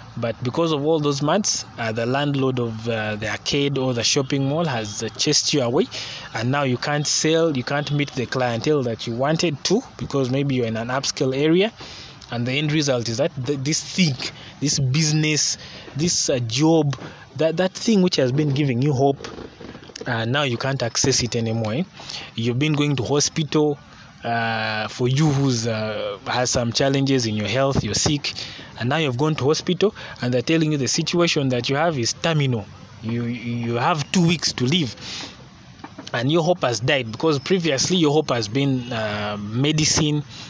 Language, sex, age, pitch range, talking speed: English, male, 20-39, 120-155 Hz, 190 wpm